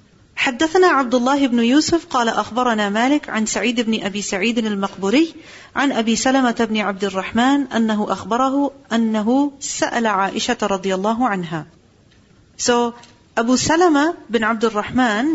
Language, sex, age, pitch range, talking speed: English, female, 40-59, 210-270 Hz, 135 wpm